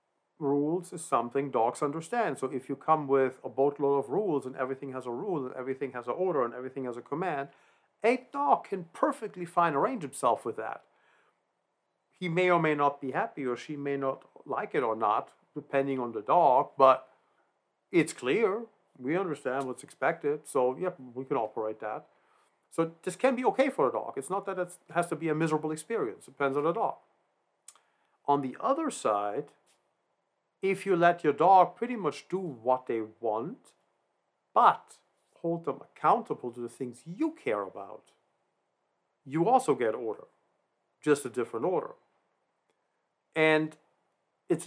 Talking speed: 175 wpm